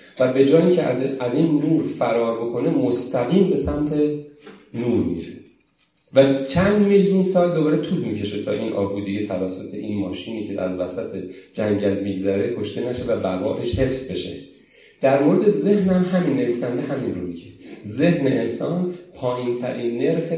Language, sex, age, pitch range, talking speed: Persian, male, 40-59, 100-150 Hz, 160 wpm